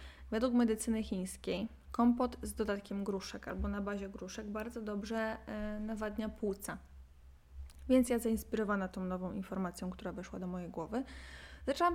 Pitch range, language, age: 185-220 Hz, Polish, 20-39